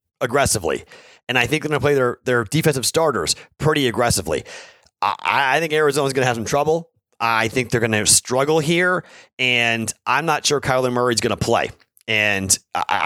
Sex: male